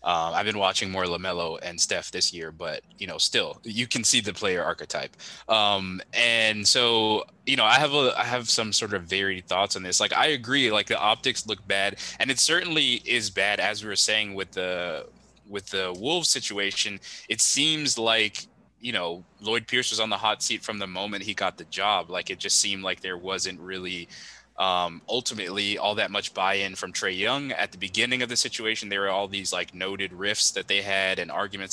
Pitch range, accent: 95-110 Hz, American